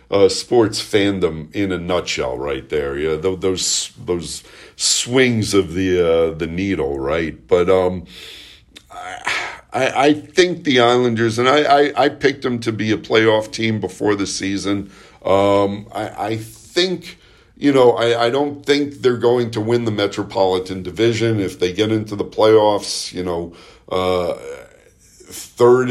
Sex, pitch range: male, 95-120 Hz